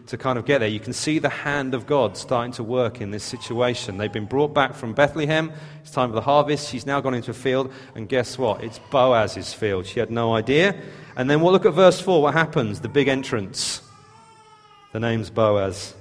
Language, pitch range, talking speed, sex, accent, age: English, 125-170 Hz, 225 wpm, male, British, 40-59